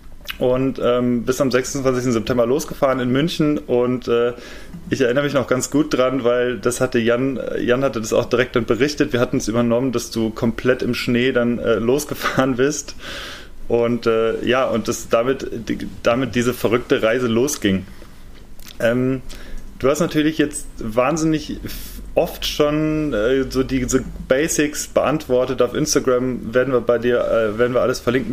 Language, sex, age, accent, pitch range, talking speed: German, male, 30-49, German, 120-145 Hz, 165 wpm